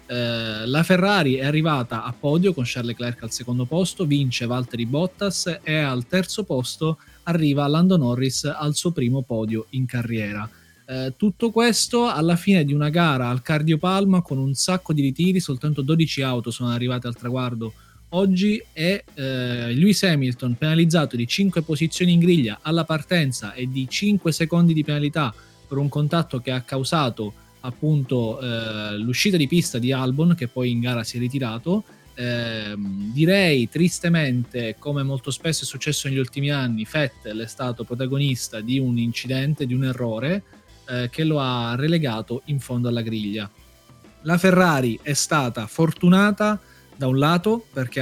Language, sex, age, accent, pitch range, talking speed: Italian, male, 20-39, native, 120-165 Hz, 160 wpm